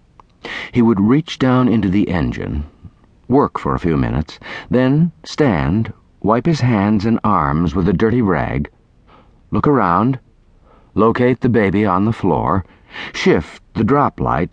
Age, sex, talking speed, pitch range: 60-79, male, 145 wpm, 80-110 Hz